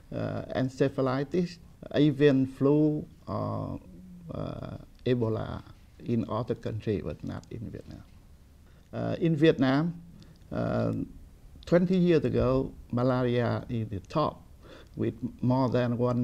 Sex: male